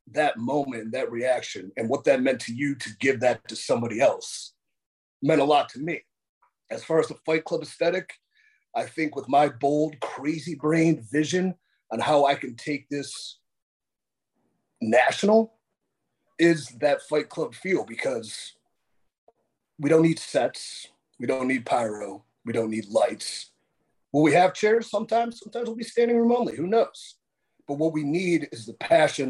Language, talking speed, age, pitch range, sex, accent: English, 165 wpm, 30-49, 130-170 Hz, male, American